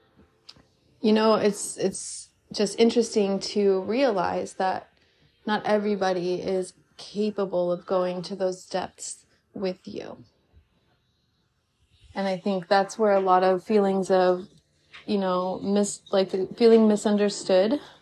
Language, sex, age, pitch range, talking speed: English, female, 30-49, 190-220 Hz, 120 wpm